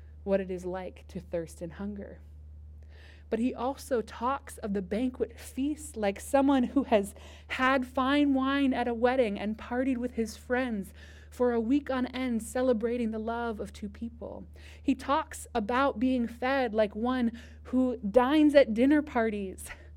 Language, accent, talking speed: English, American, 160 wpm